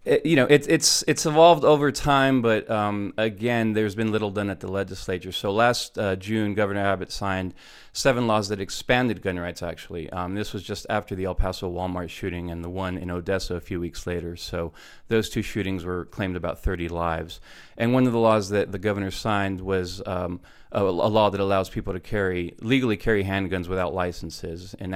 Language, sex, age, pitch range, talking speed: English, male, 30-49, 90-110 Hz, 205 wpm